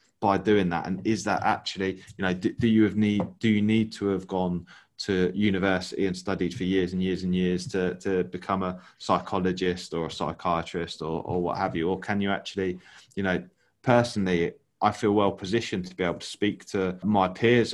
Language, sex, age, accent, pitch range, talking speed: English, male, 20-39, British, 90-105 Hz, 210 wpm